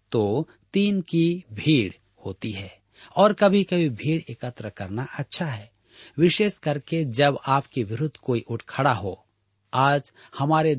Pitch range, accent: 110-155 Hz, native